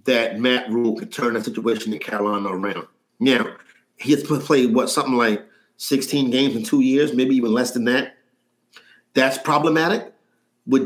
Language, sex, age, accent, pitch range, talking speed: English, male, 40-59, American, 125-160 Hz, 165 wpm